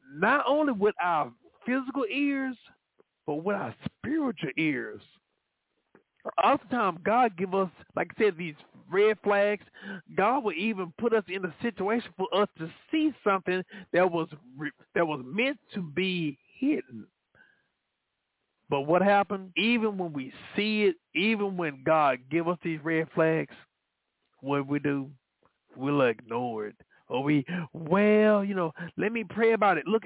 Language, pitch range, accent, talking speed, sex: English, 165-220 Hz, American, 150 wpm, male